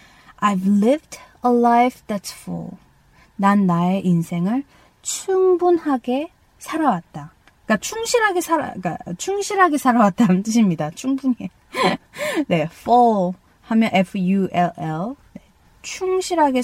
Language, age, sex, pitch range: Korean, 20-39, female, 185-255 Hz